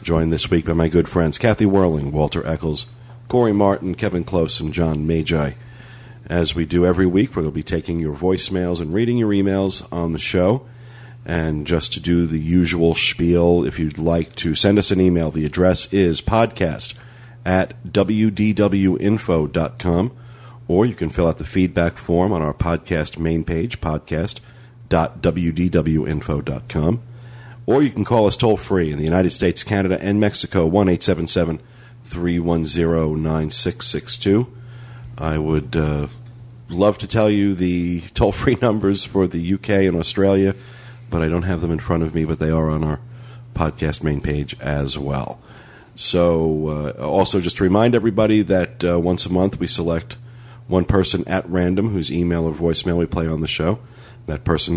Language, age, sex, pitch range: English, 40-59, male, 80-110 Hz